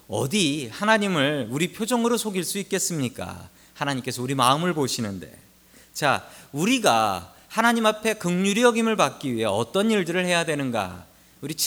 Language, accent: Korean, native